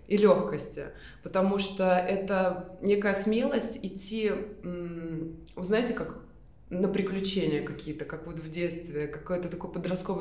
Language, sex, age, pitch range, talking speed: Russian, female, 20-39, 170-210 Hz, 120 wpm